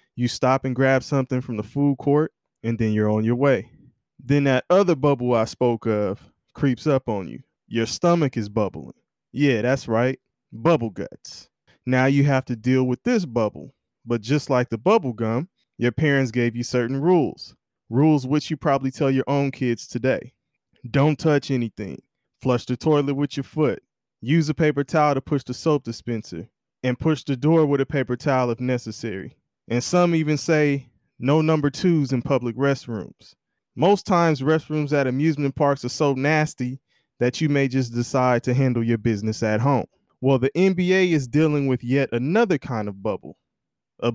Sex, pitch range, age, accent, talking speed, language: male, 120-145 Hz, 20-39, American, 180 wpm, English